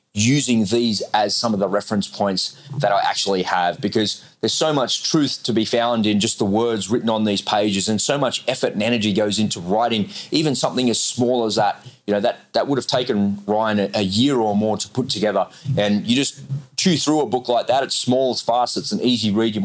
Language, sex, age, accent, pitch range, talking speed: English, male, 30-49, Australian, 105-130 Hz, 235 wpm